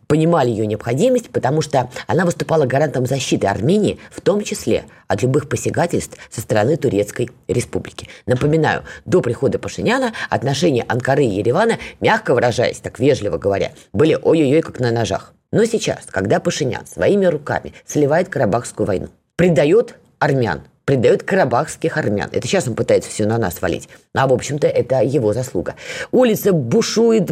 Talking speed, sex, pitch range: 150 wpm, female, 125-180 Hz